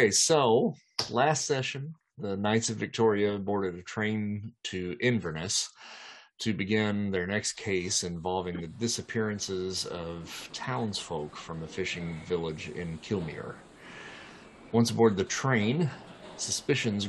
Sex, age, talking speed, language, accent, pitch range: male, 40-59, 120 wpm, English, American, 90-110 Hz